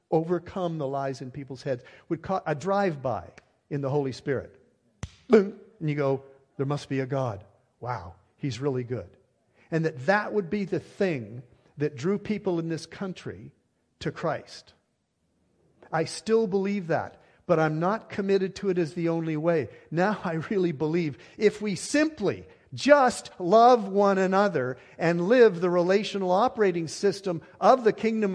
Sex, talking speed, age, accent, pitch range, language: male, 160 wpm, 50-69, American, 150-205 Hz, English